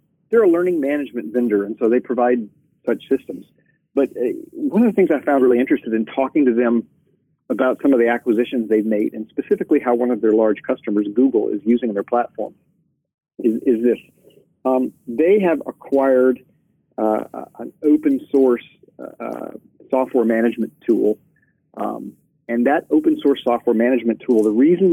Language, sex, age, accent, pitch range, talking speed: English, male, 40-59, American, 115-150 Hz, 165 wpm